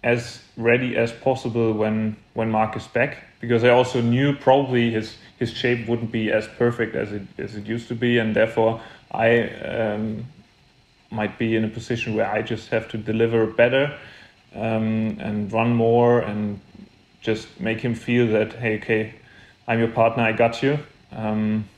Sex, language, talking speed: male, English, 175 wpm